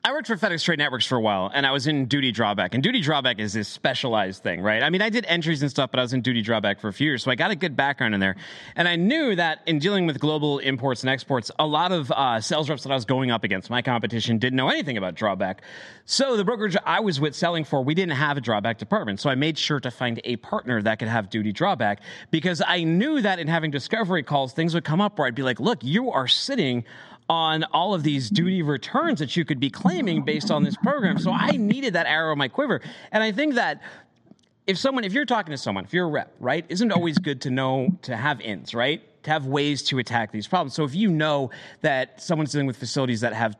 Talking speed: 265 wpm